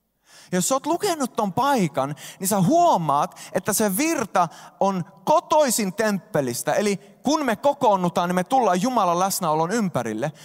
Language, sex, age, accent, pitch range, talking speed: Finnish, male, 20-39, native, 160-225 Hz, 140 wpm